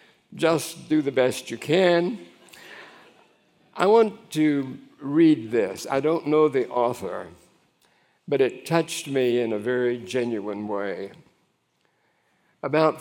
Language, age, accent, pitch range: English, 60-79, American, 120-160 Hz